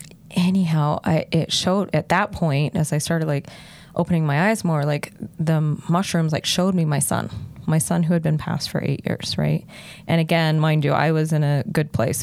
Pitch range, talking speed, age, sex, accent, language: 155-190 Hz, 210 wpm, 20-39, female, American, English